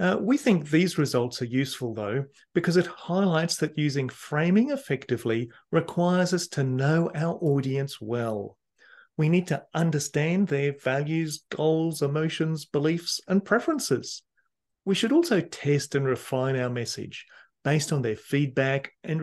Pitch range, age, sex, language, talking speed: 130-175 Hz, 40-59, male, English, 145 wpm